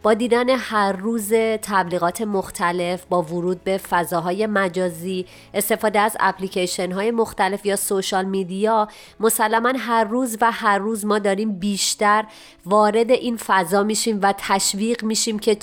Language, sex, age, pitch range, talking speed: Persian, female, 30-49, 180-225 Hz, 140 wpm